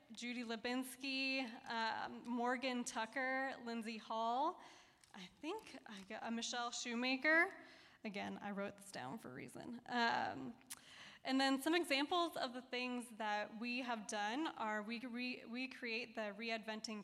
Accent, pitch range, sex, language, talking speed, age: American, 225-270 Hz, female, English, 150 wpm, 10-29